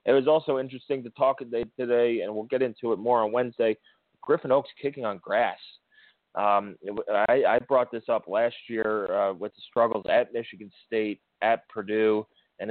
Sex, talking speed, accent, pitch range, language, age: male, 180 wpm, American, 105-125 Hz, English, 30-49